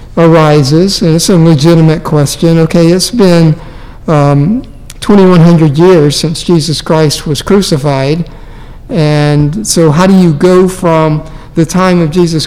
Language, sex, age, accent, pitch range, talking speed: English, male, 60-79, American, 150-185 Hz, 135 wpm